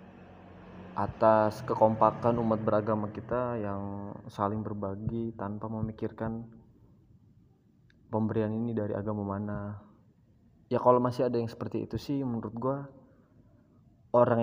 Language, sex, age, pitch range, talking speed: Indonesian, male, 20-39, 105-120 Hz, 110 wpm